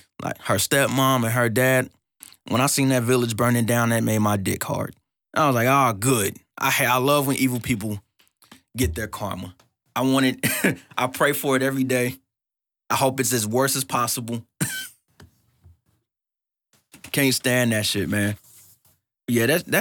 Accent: American